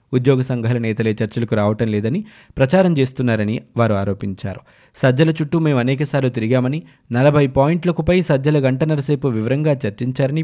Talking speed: 130 wpm